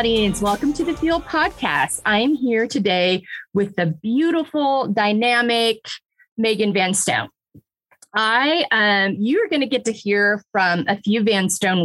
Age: 30-49